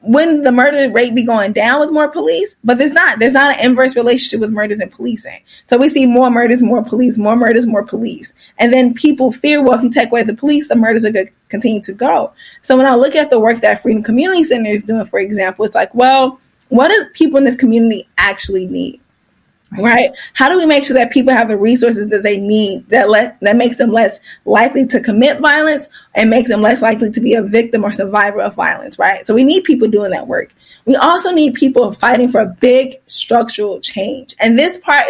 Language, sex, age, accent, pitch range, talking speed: English, female, 10-29, American, 225-275 Hz, 235 wpm